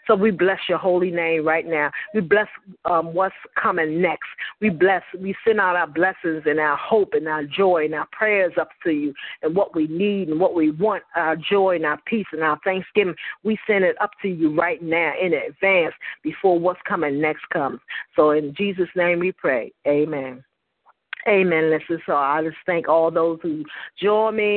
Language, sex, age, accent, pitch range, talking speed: English, female, 40-59, American, 155-190 Hz, 200 wpm